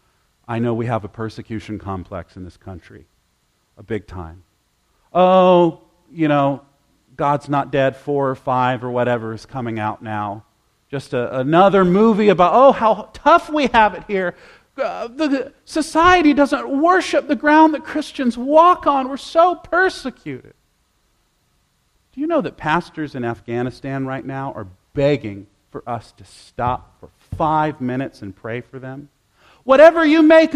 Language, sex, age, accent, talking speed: English, male, 40-59, American, 155 wpm